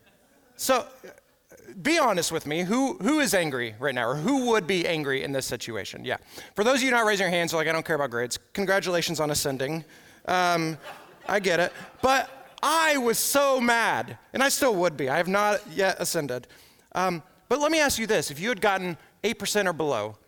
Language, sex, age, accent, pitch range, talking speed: English, male, 30-49, American, 150-225 Hz, 205 wpm